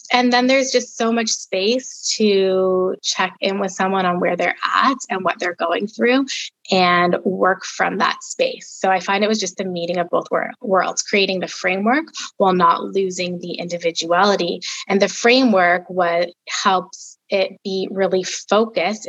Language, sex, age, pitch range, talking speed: English, female, 20-39, 180-220 Hz, 165 wpm